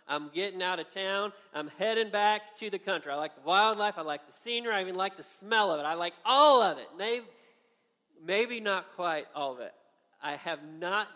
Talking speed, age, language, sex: 220 wpm, 40-59, English, male